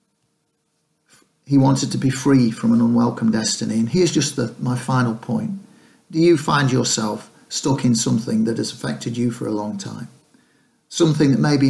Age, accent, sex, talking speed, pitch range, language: 40-59, British, male, 175 wpm, 115-150 Hz, English